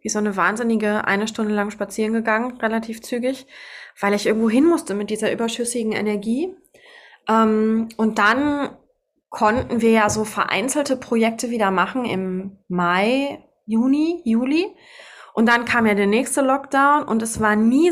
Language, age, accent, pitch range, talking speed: German, 20-39, German, 200-250 Hz, 150 wpm